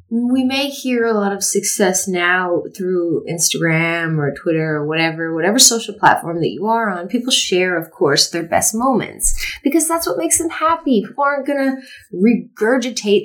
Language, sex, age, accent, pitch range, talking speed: English, female, 30-49, American, 180-230 Hz, 175 wpm